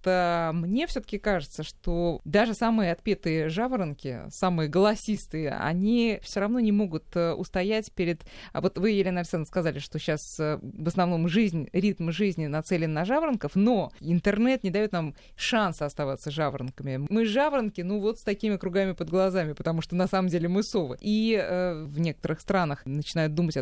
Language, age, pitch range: Russian, 20-39, 155-205 Hz